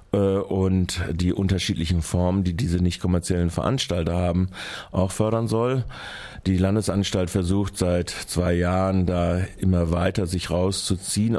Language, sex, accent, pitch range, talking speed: German, male, German, 85-95 Hz, 125 wpm